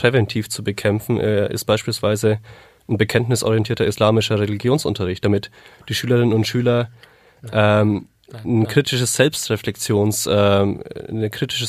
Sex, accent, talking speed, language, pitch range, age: male, German, 105 wpm, German, 105-120 Hz, 30-49